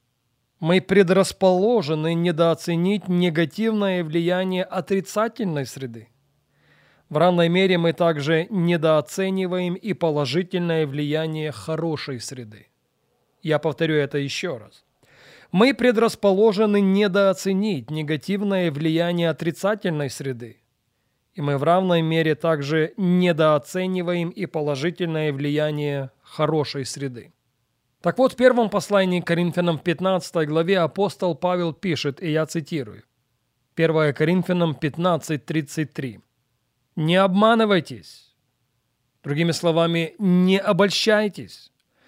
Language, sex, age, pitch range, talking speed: English, male, 30-49, 145-185 Hz, 95 wpm